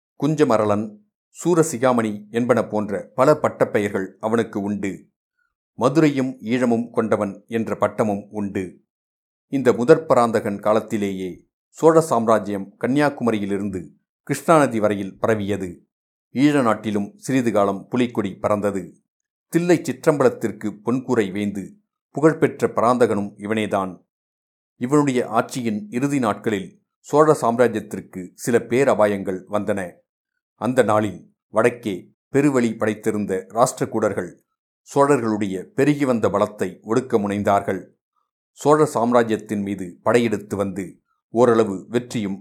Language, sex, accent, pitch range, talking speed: Tamil, male, native, 100-130 Hz, 90 wpm